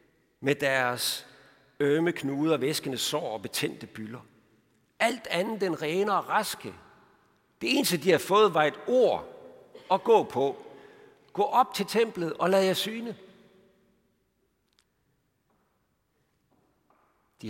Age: 60-79